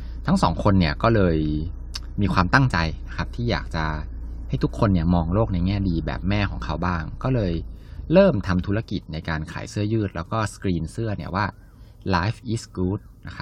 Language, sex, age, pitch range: Thai, male, 20-39, 80-105 Hz